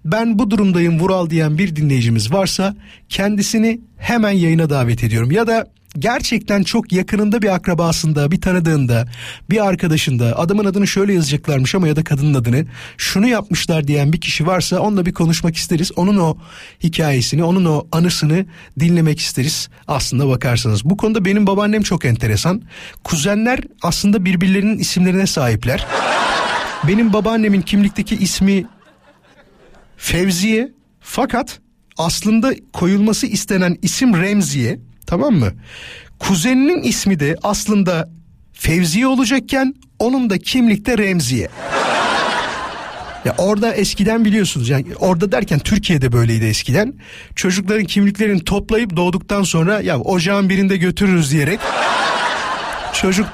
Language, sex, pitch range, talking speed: Turkish, male, 160-205 Hz, 120 wpm